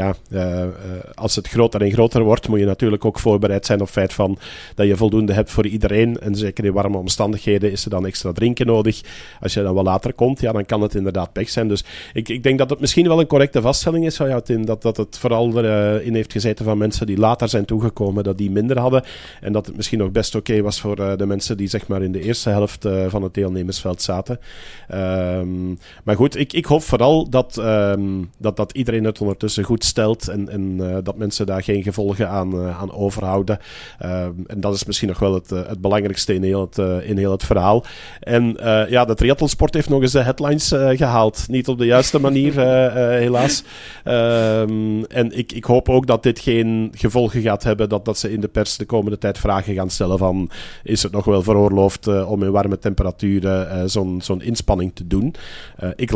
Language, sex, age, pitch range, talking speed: Dutch, male, 40-59, 100-115 Hz, 215 wpm